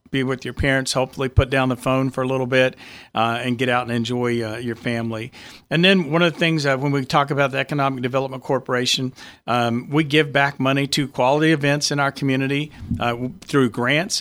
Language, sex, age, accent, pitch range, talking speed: English, male, 50-69, American, 120-140 Hz, 210 wpm